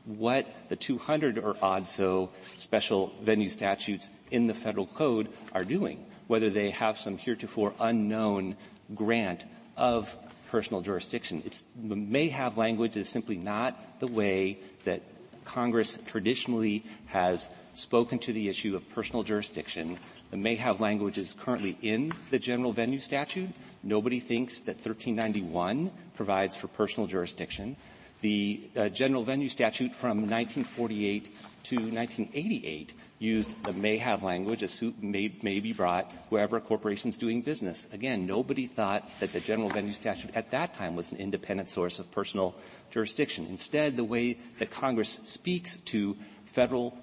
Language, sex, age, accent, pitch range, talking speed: English, male, 40-59, American, 100-120 Hz, 145 wpm